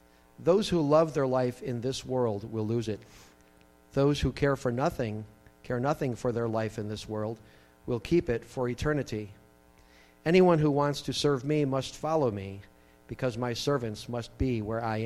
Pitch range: 100-140 Hz